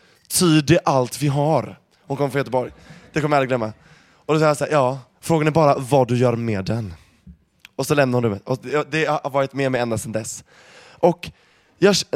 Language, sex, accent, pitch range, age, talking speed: Swedish, male, native, 125-160 Hz, 20-39, 200 wpm